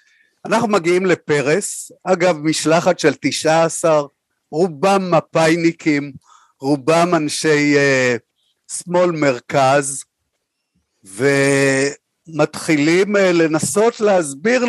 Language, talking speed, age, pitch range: Hebrew, 80 wpm, 50-69, 150-195 Hz